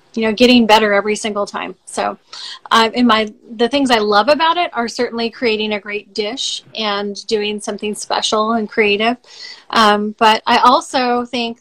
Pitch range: 215-245 Hz